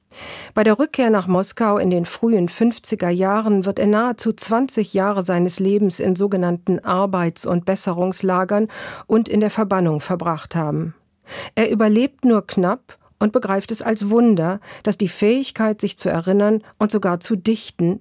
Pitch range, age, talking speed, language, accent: 185-220 Hz, 50-69, 155 wpm, German, German